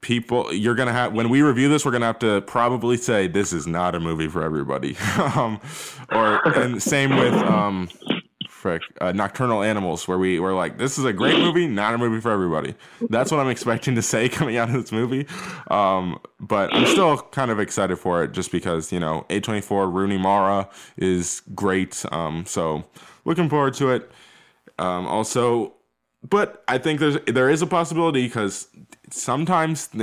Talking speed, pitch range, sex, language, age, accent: 190 wpm, 95-125 Hz, male, English, 20-39, American